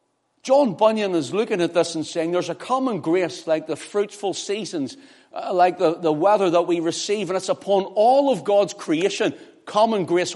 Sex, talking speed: male, 190 wpm